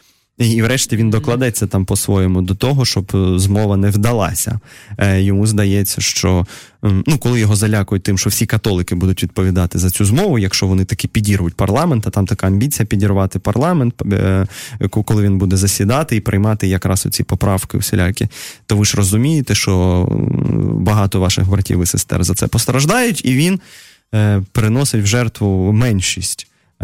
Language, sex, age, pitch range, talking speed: Russian, male, 20-39, 100-125 Hz, 150 wpm